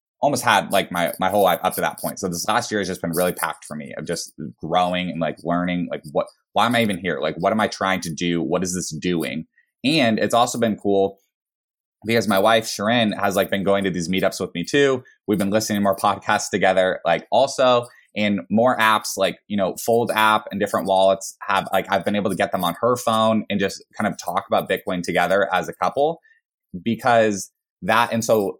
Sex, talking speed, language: male, 235 wpm, English